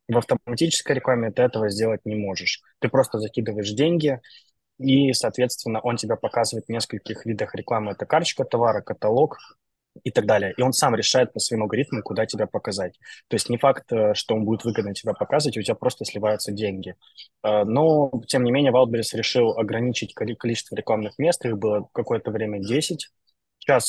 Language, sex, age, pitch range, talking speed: Russian, male, 20-39, 110-125 Hz, 175 wpm